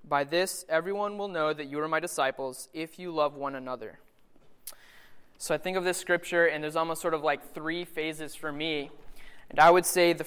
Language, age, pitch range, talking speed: English, 20-39, 145-165 Hz, 210 wpm